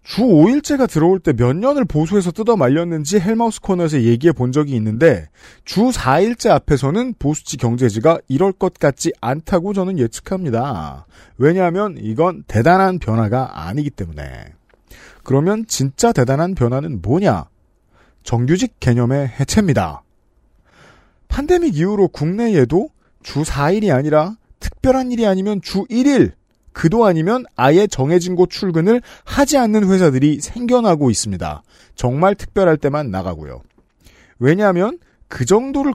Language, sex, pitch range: Korean, male, 120-200 Hz